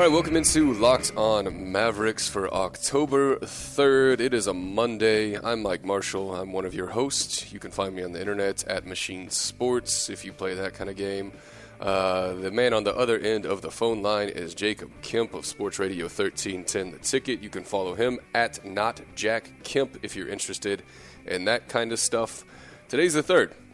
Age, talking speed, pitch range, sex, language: 30-49, 195 wpm, 95-115 Hz, male, English